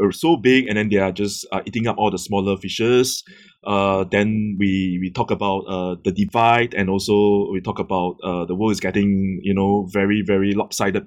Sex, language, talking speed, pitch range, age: male, English, 210 wpm, 100-125 Hz, 20-39